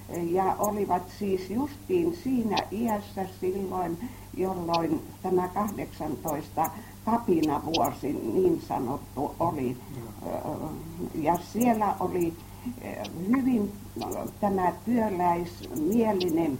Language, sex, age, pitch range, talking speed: Finnish, female, 60-79, 170-220 Hz, 70 wpm